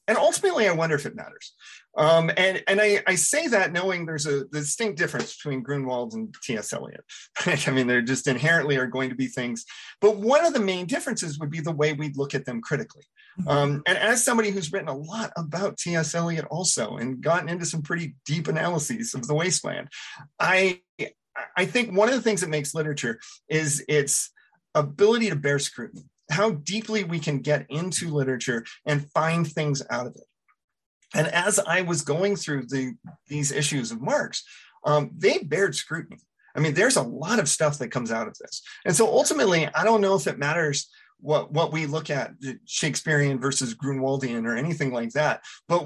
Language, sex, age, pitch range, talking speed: English, male, 30-49, 140-195 Hz, 195 wpm